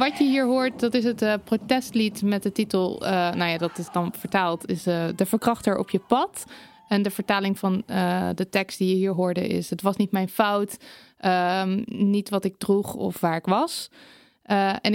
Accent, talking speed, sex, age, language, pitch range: Dutch, 215 wpm, female, 20-39, Dutch, 190-230 Hz